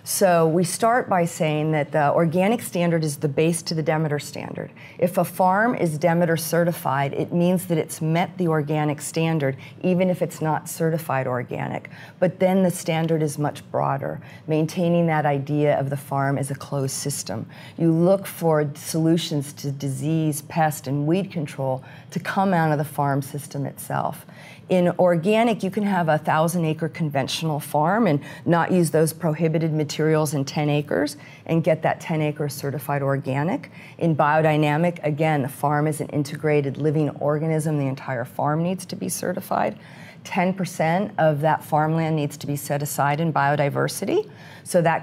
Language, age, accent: English, 40-59, American